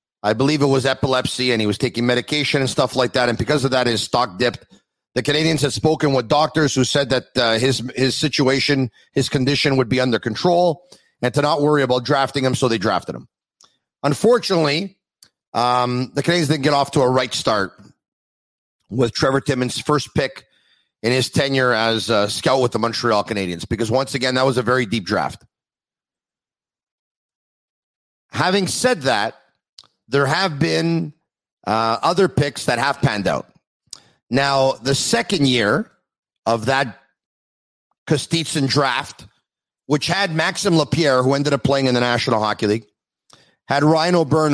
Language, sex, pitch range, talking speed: English, male, 120-150 Hz, 165 wpm